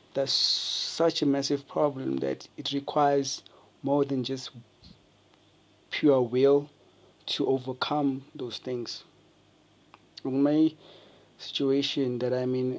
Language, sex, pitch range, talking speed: English, male, 125-140 Hz, 105 wpm